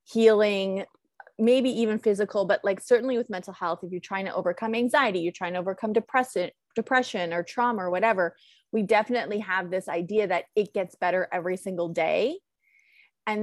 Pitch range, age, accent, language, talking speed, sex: 180-225 Hz, 20-39, American, English, 175 wpm, female